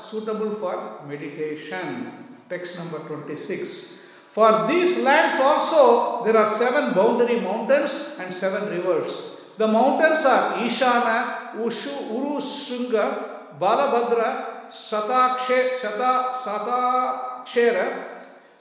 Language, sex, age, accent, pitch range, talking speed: English, male, 50-69, Indian, 220-265 Hz, 85 wpm